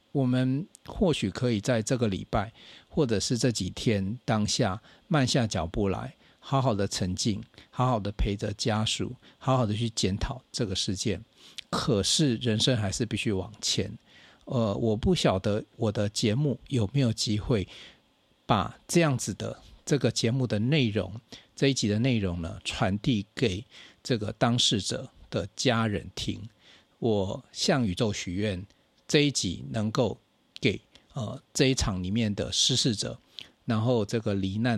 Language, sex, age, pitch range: Chinese, male, 50-69, 100-125 Hz